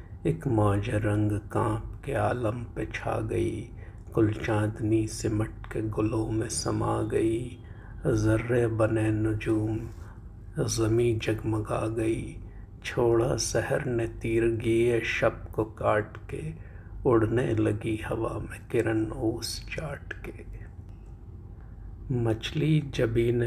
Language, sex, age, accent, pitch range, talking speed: Hindi, male, 50-69, native, 105-115 Hz, 105 wpm